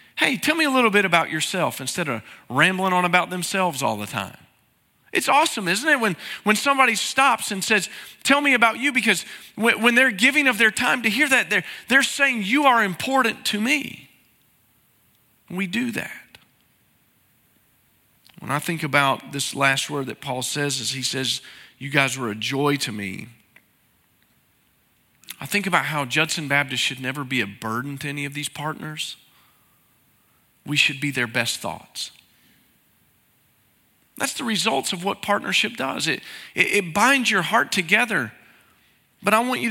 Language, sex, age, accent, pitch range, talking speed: English, male, 40-59, American, 140-215 Hz, 170 wpm